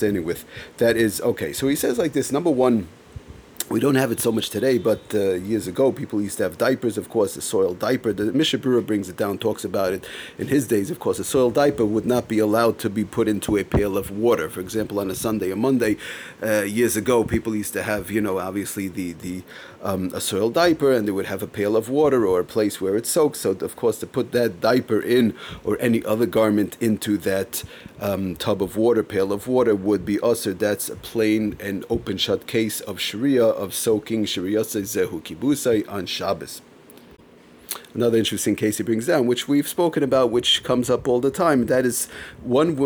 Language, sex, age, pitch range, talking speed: English, male, 30-49, 105-120 Hz, 220 wpm